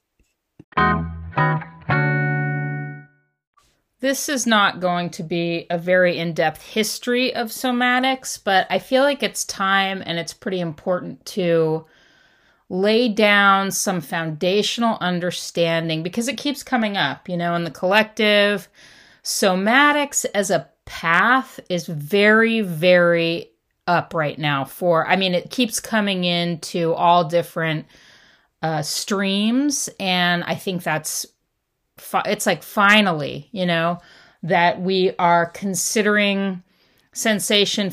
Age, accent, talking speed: 30-49, American, 115 wpm